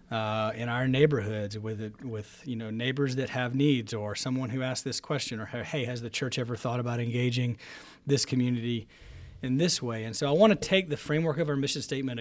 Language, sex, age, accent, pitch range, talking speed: English, male, 40-59, American, 115-140 Hz, 215 wpm